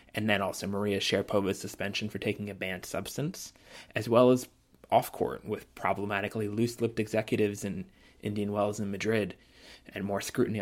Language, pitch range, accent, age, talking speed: English, 105-120 Hz, American, 20-39, 160 wpm